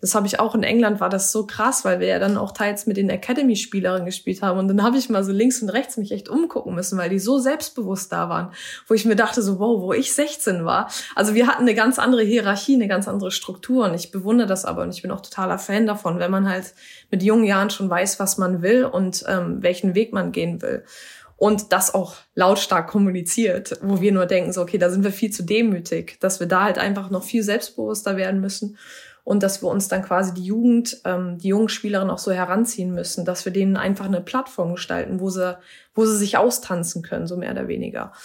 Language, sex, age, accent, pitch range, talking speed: German, female, 20-39, German, 185-220 Hz, 240 wpm